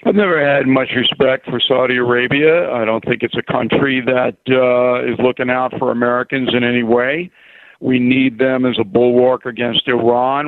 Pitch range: 125-145 Hz